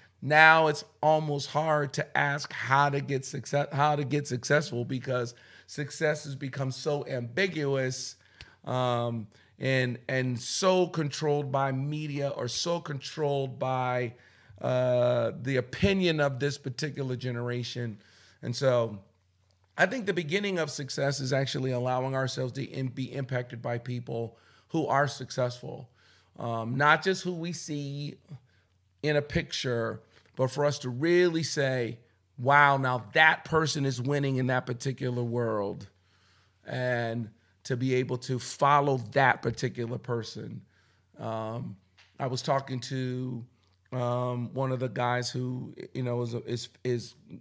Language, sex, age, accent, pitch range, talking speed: English, male, 40-59, American, 120-145 Hz, 135 wpm